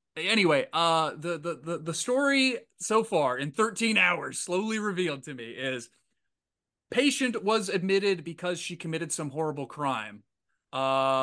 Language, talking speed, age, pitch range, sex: English, 145 wpm, 20-39, 140-185 Hz, male